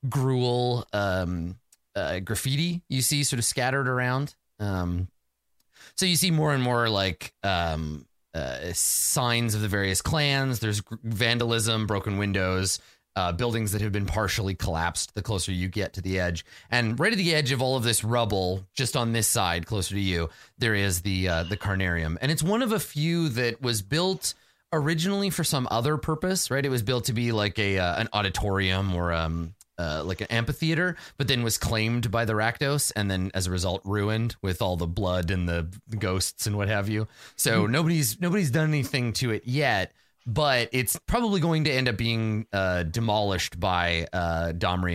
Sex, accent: male, American